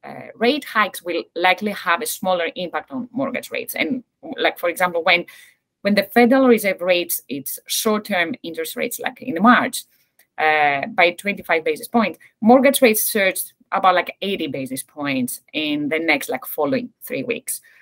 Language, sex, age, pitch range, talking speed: English, female, 30-49, 175-255 Hz, 165 wpm